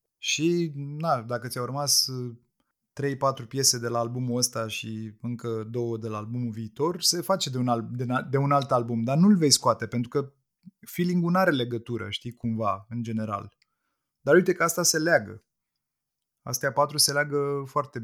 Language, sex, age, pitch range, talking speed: Romanian, male, 20-39, 115-140 Hz, 175 wpm